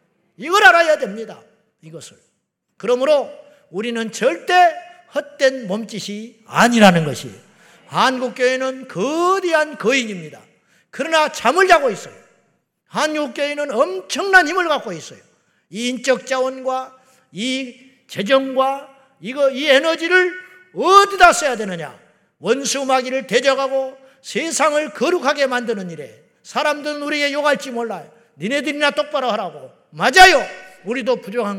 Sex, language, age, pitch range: male, Korean, 50-69, 205-295 Hz